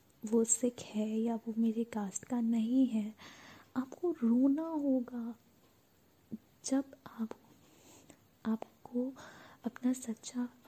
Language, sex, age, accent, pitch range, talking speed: Hindi, female, 20-39, native, 225-270 Hz, 100 wpm